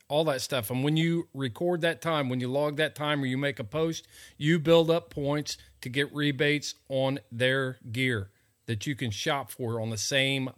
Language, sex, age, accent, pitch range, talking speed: English, male, 40-59, American, 115-145 Hz, 210 wpm